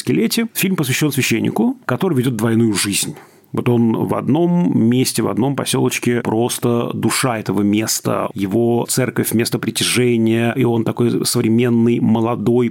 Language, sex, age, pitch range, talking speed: Russian, male, 40-59, 110-130 Hz, 130 wpm